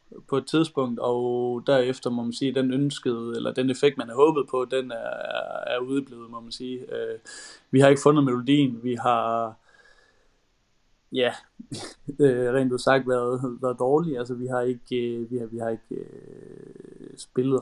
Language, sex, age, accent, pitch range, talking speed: Danish, male, 20-39, native, 120-140 Hz, 165 wpm